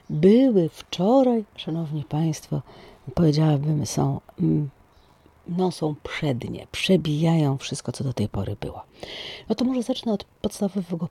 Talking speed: 115 wpm